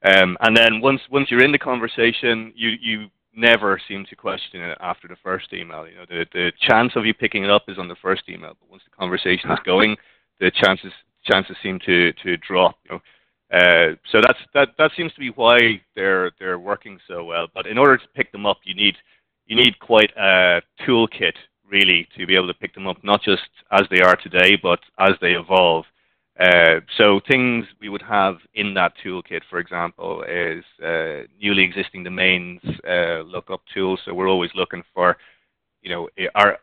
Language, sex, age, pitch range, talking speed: English, male, 30-49, 90-110 Hz, 200 wpm